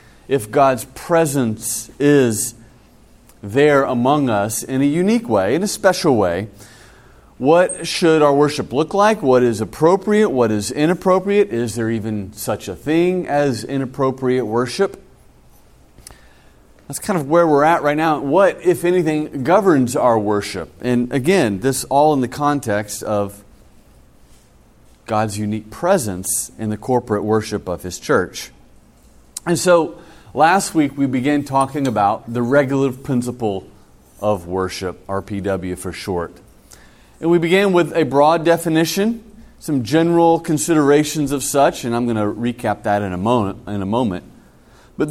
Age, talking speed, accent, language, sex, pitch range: 30-49, 140 wpm, American, English, male, 110-155 Hz